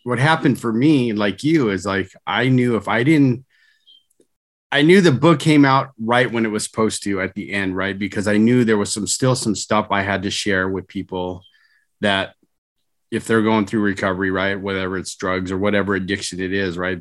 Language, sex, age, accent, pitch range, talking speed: English, male, 30-49, American, 100-130 Hz, 210 wpm